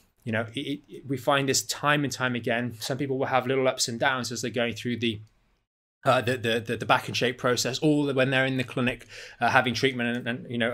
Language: English